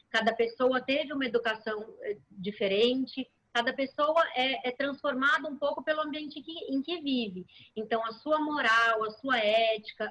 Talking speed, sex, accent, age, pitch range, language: 150 wpm, female, Brazilian, 20-39, 220-290 Hz, Portuguese